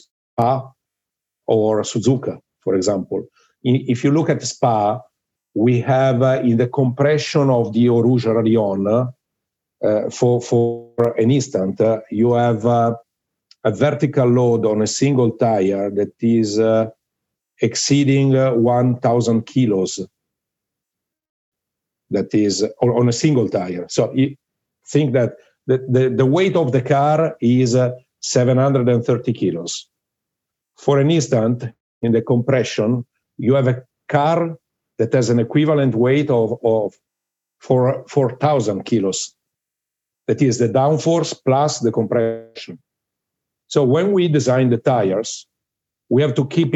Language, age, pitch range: English, 50-69, 115-135 Hz